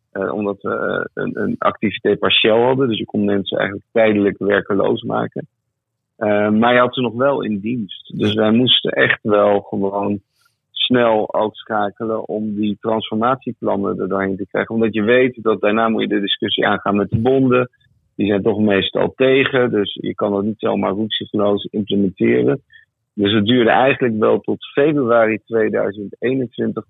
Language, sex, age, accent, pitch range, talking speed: Dutch, male, 50-69, Dutch, 100-115 Hz, 165 wpm